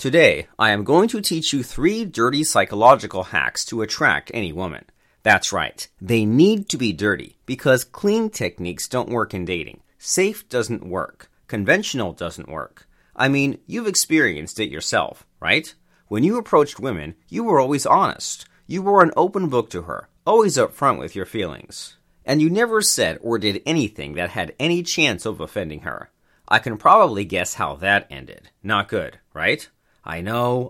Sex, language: male, English